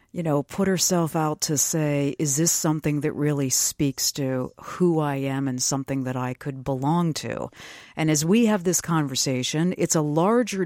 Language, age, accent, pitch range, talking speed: English, 50-69, American, 135-175 Hz, 185 wpm